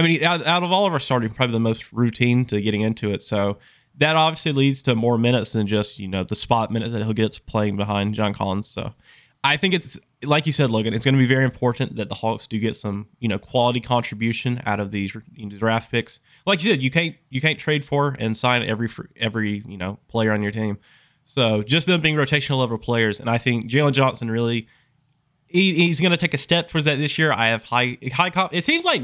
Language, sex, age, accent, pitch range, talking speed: English, male, 20-39, American, 110-140 Hz, 245 wpm